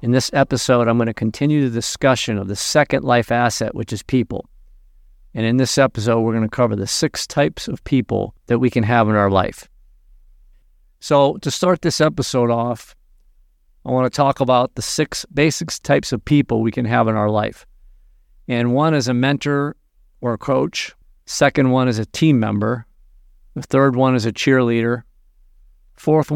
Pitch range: 110-135 Hz